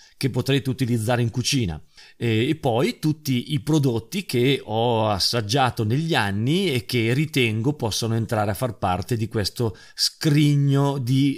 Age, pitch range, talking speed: 40-59, 110-140 Hz, 140 wpm